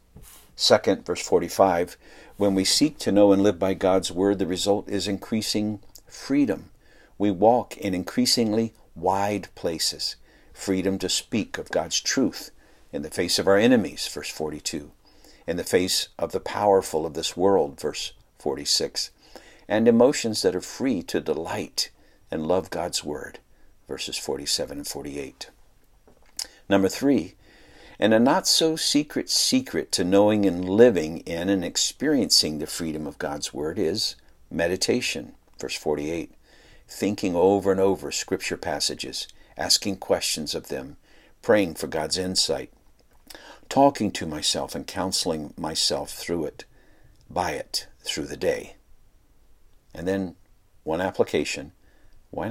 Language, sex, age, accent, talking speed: English, male, 60-79, American, 135 wpm